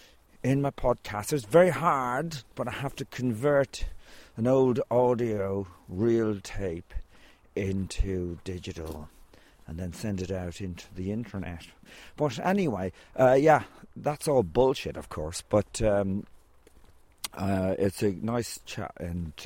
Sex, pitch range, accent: male, 95-130 Hz, British